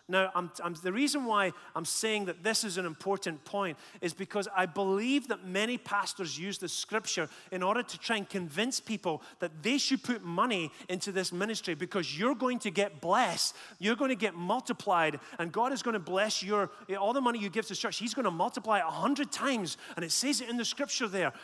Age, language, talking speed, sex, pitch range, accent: 30-49, English, 225 wpm, male, 185-235 Hz, British